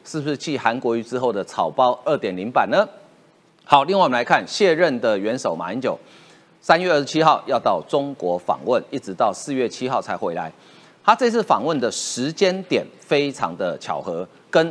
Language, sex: Chinese, male